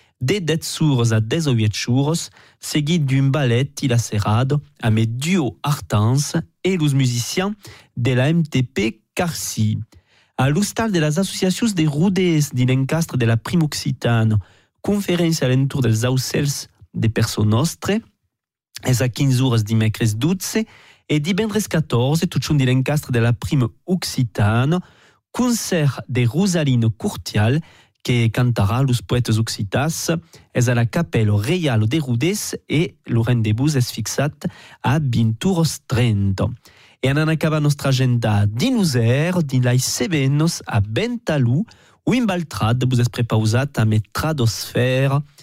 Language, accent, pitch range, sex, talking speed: French, French, 115-160 Hz, male, 140 wpm